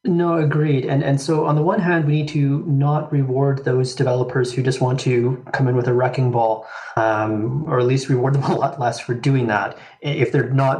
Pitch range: 120-150 Hz